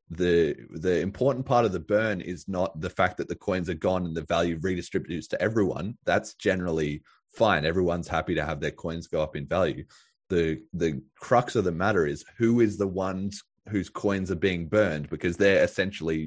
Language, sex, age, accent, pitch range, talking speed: English, male, 20-39, Australian, 85-105 Hz, 200 wpm